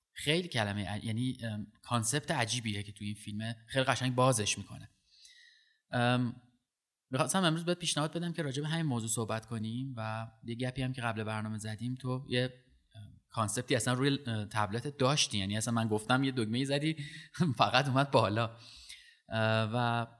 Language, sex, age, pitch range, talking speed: Persian, male, 20-39, 110-130 Hz, 150 wpm